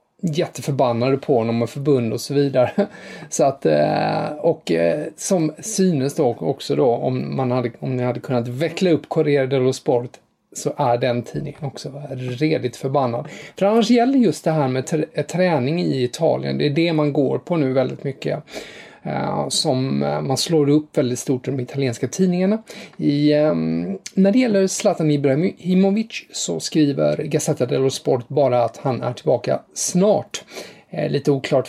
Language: English